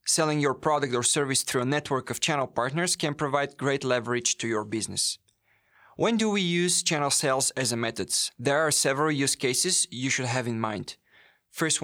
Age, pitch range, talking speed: 20-39, 120-150 Hz, 195 wpm